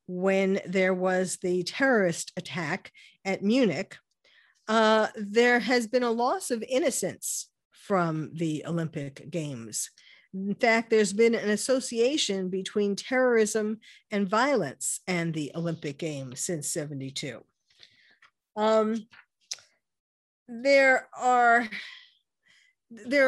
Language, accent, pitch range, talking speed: English, American, 175-230 Hz, 100 wpm